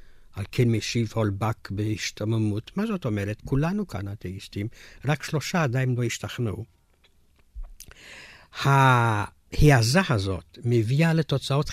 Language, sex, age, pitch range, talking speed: Hebrew, male, 60-79, 95-130 Hz, 95 wpm